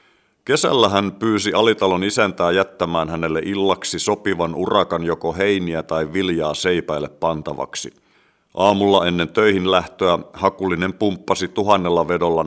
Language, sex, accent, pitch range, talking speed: Finnish, male, native, 85-95 Hz, 115 wpm